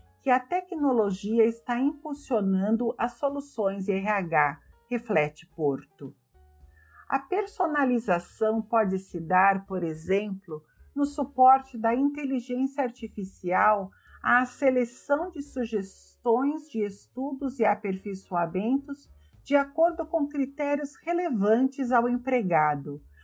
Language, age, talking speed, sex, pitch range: Portuguese, 50-69, 100 wpm, female, 175-255 Hz